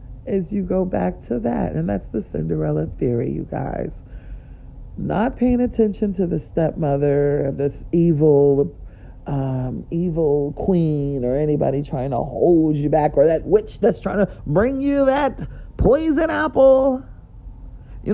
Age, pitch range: 40-59, 135-205 Hz